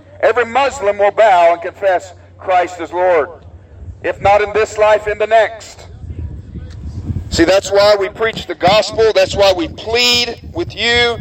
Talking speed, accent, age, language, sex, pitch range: 160 wpm, American, 50-69, English, male, 170-235 Hz